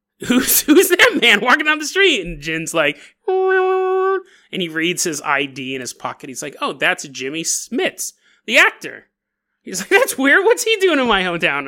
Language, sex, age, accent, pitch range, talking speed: English, male, 30-49, American, 165-260 Hz, 190 wpm